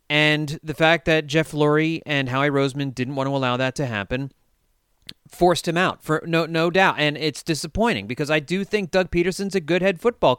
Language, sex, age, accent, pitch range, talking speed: English, male, 30-49, American, 135-185 Hz, 210 wpm